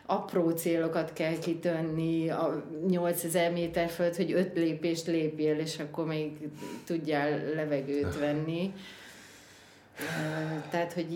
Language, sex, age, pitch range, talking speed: Hungarian, female, 30-49, 145-175 Hz, 115 wpm